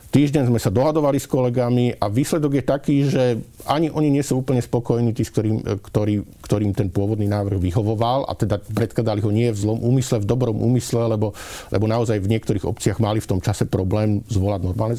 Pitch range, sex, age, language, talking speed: 95-120 Hz, male, 50-69, Slovak, 195 wpm